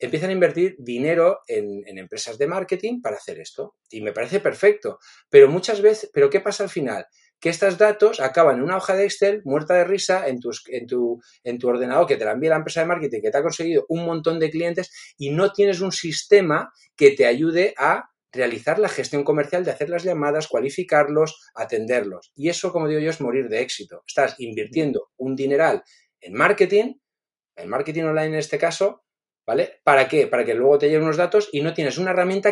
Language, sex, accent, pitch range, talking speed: Spanish, male, Spanish, 145-205 Hz, 205 wpm